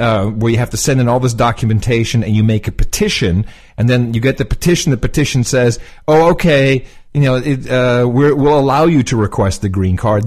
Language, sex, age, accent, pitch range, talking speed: English, male, 40-59, American, 110-155 Hz, 220 wpm